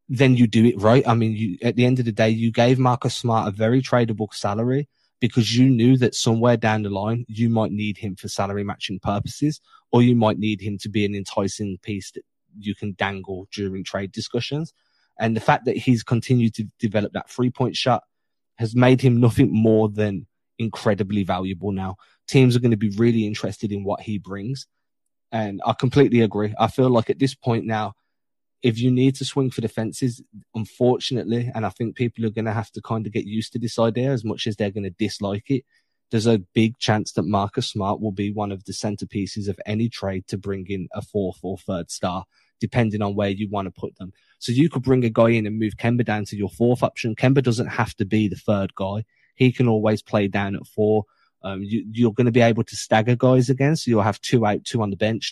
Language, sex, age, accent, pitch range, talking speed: English, male, 20-39, British, 105-120 Hz, 230 wpm